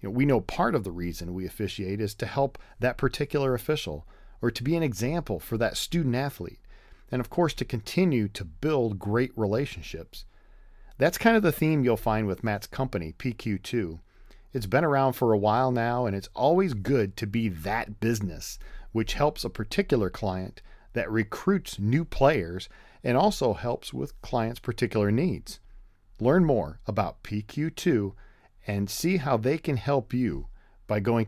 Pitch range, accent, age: 95-130 Hz, American, 40-59